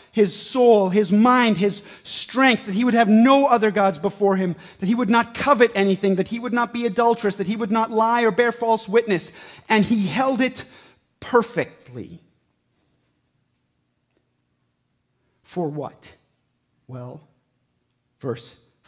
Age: 40-59